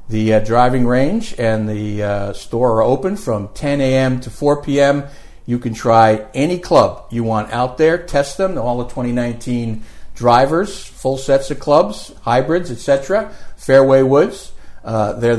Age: 50-69